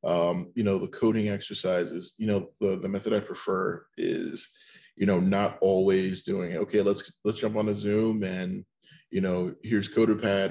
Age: 20-39